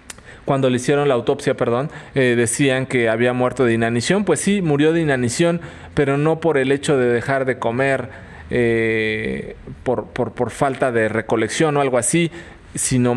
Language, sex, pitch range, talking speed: Spanish, male, 125-150 Hz, 175 wpm